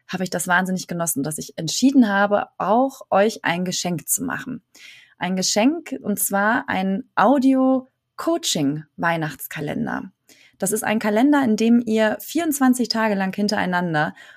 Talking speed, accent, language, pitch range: 135 wpm, German, German, 190-235 Hz